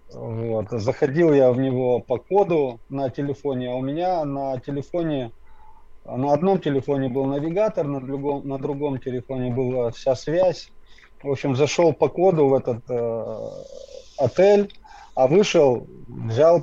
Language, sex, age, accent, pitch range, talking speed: Russian, male, 20-39, native, 115-145 Hz, 140 wpm